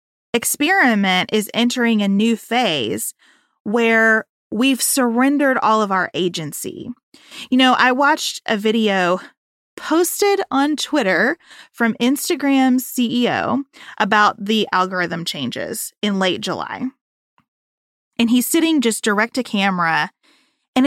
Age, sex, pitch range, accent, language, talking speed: 30-49, female, 200-270 Hz, American, English, 115 wpm